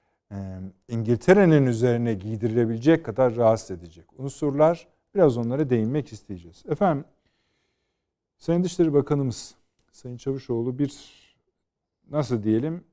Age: 50-69